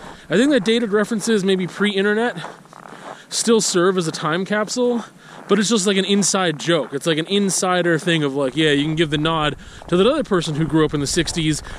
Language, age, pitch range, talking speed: English, 30-49, 155-200 Hz, 220 wpm